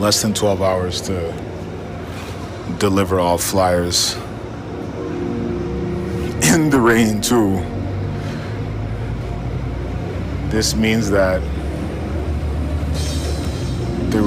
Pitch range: 75-105 Hz